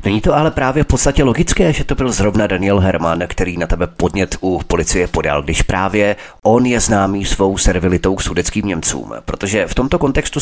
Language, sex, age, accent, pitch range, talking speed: Czech, male, 30-49, native, 90-120 Hz, 195 wpm